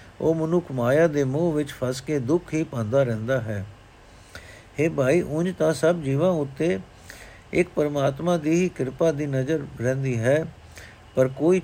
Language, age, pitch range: Punjabi, 60-79, 115-160 Hz